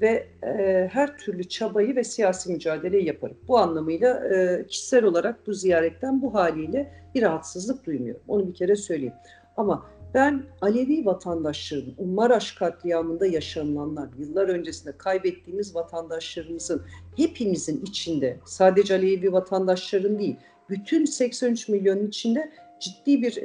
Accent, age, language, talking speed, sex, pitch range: native, 50-69, Turkish, 125 wpm, female, 180-225 Hz